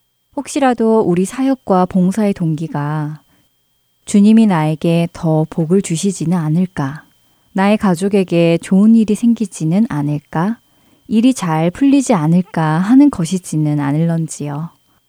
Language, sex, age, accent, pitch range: Korean, female, 20-39, native, 155-205 Hz